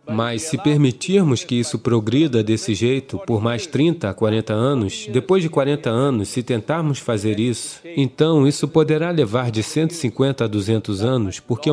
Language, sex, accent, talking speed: English, male, Brazilian, 165 wpm